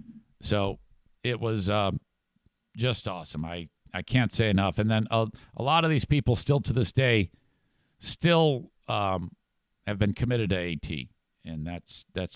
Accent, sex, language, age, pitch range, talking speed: American, male, English, 50-69, 90-125 Hz, 160 wpm